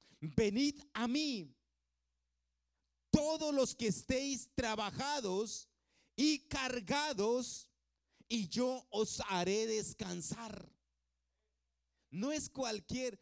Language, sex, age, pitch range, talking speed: Spanish, male, 40-59, 165-240 Hz, 80 wpm